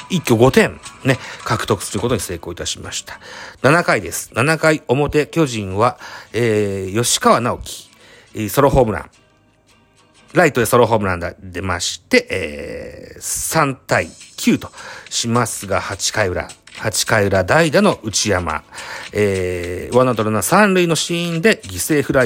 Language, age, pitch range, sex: Japanese, 40-59, 100-150 Hz, male